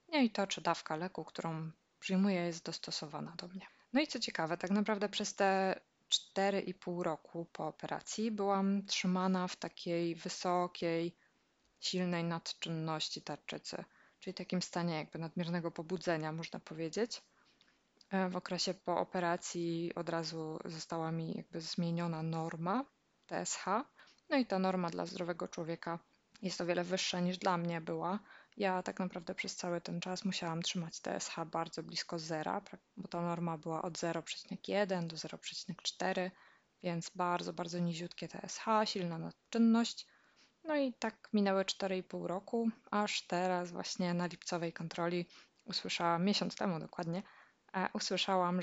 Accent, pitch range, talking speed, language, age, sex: native, 170-195 Hz, 140 wpm, Polish, 20-39, female